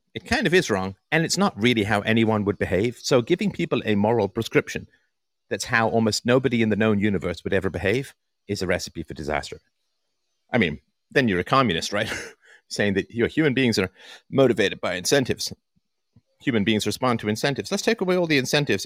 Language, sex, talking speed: English, male, 200 wpm